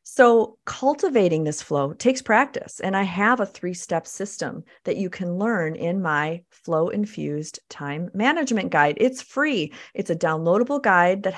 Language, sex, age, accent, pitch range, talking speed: English, female, 40-59, American, 170-245 Hz, 155 wpm